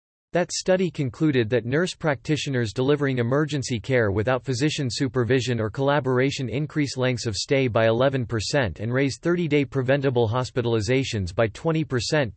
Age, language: 40-59, English